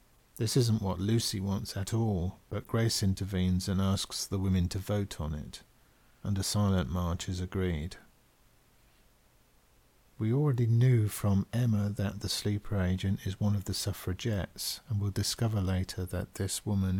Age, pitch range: 50-69, 95-110 Hz